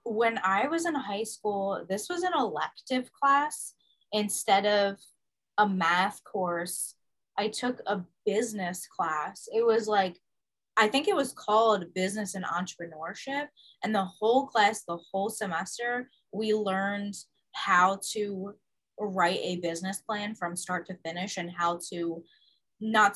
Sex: female